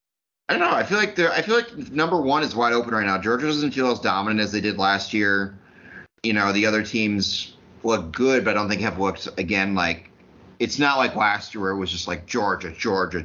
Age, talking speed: 30-49, 245 wpm